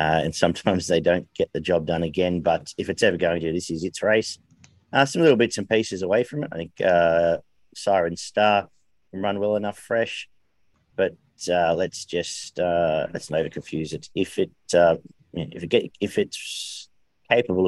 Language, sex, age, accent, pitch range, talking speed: English, male, 40-59, Australian, 90-105 Hz, 195 wpm